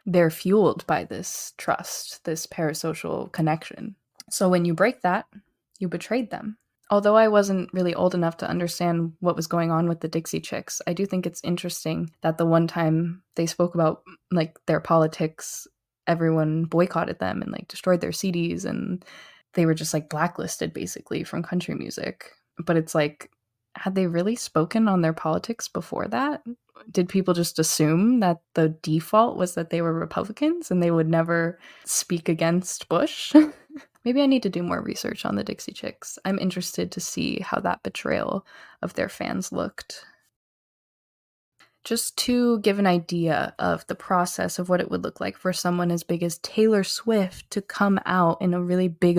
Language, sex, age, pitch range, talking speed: English, female, 20-39, 165-200 Hz, 180 wpm